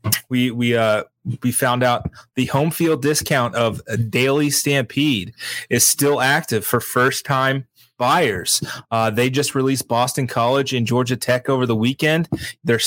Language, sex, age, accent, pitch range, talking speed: English, male, 20-39, American, 115-135 Hz, 160 wpm